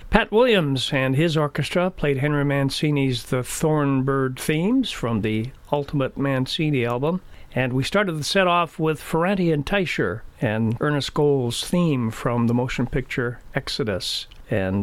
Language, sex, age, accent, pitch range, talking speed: English, male, 50-69, American, 125-160 Hz, 140 wpm